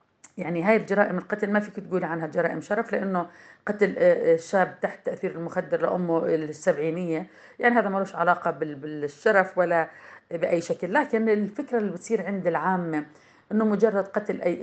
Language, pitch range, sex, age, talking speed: Arabic, 165-195 Hz, female, 40-59, 150 wpm